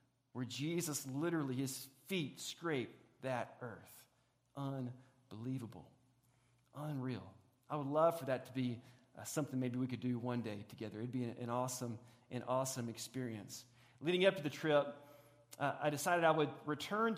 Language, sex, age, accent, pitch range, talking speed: English, male, 40-59, American, 130-170 Hz, 155 wpm